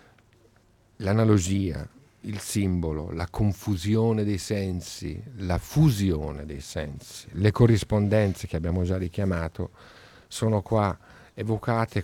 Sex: male